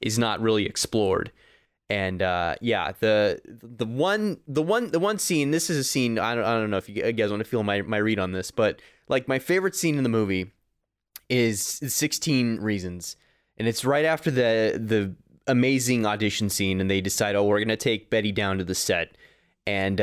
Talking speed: 205 wpm